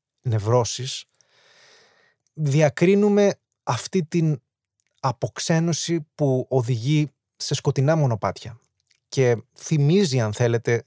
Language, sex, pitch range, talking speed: Greek, male, 115-140 Hz, 75 wpm